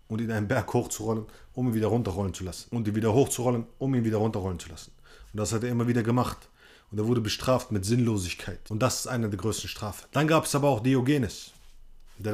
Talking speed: 235 wpm